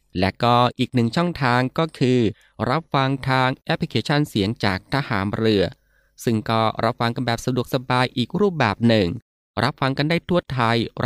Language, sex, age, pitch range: Thai, male, 20-39, 105-135 Hz